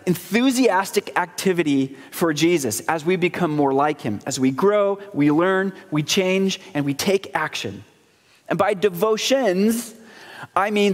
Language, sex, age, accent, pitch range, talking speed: English, male, 30-49, American, 150-195 Hz, 145 wpm